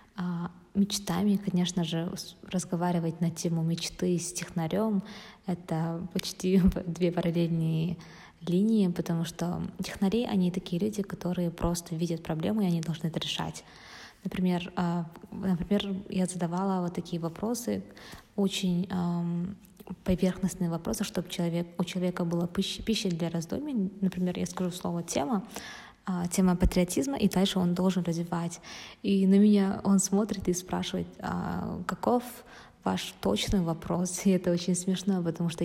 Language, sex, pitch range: Russian, female, 170-190 Hz